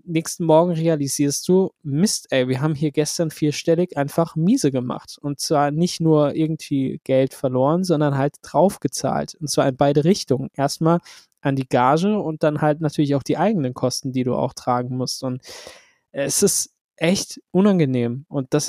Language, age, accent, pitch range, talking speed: German, 20-39, German, 145-165 Hz, 175 wpm